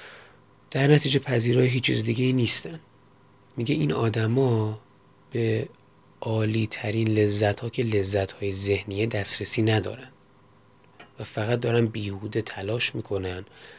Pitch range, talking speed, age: 100-120 Hz, 115 wpm, 30-49